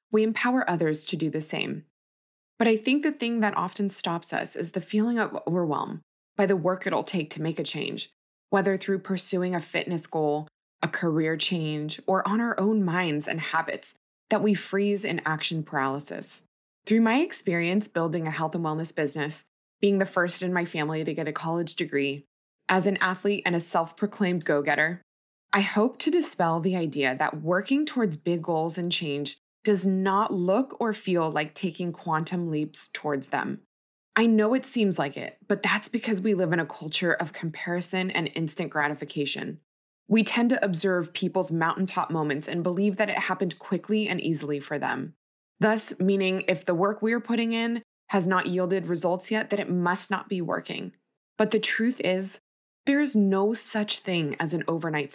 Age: 20-39